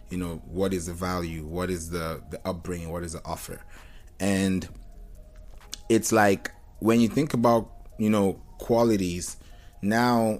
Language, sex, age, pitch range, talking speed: English, male, 20-39, 90-105 Hz, 150 wpm